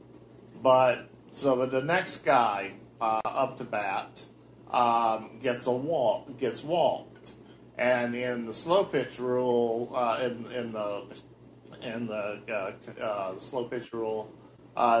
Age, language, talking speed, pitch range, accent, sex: 40-59, English, 130 wpm, 110-125 Hz, American, male